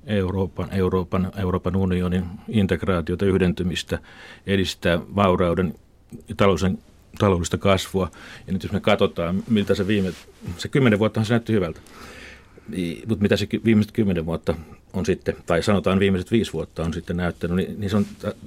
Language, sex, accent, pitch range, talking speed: Finnish, male, native, 95-115 Hz, 150 wpm